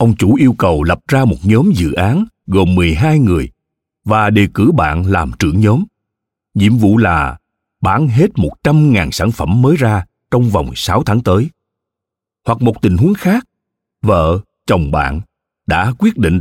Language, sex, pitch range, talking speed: Vietnamese, male, 90-135 Hz, 170 wpm